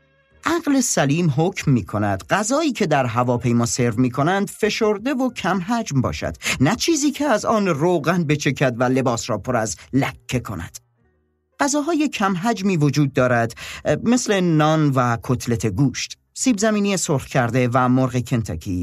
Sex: male